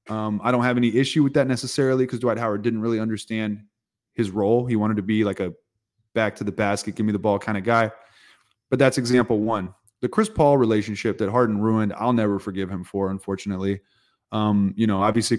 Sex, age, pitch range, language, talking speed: male, 20-39, 105-120 Hz, English, 215 wpm